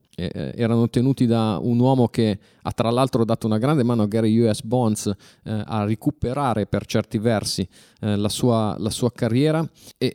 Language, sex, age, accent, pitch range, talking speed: Italian, male, 30-49, native, 105-130 Hz, 165 wpm